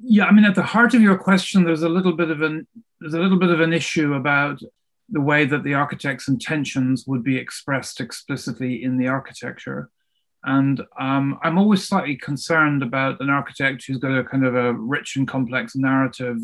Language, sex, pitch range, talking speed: English, male, 130-170 Hz, 185 wpm